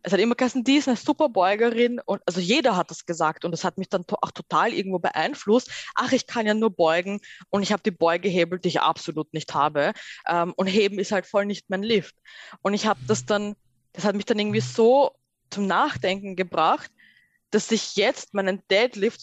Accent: German